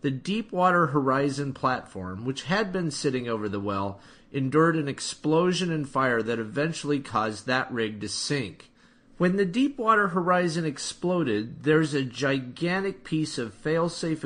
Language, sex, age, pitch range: English, male, 40-59, 130-175 Hz